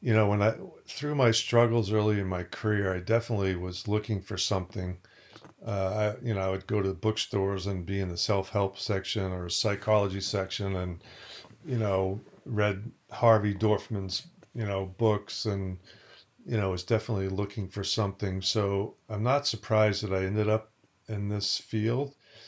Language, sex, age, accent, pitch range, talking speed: English, male, 50-69, American, 95-110 Hz, 175 wpm